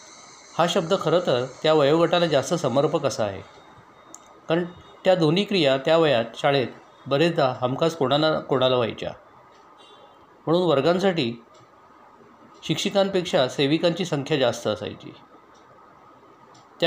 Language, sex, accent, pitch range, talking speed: Marathi, male, native, 135-175 Hz, 85 wpm